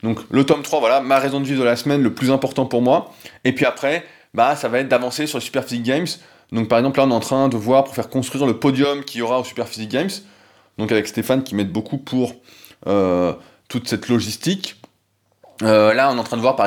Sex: male